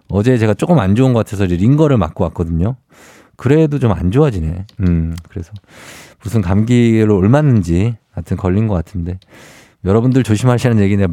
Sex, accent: male, native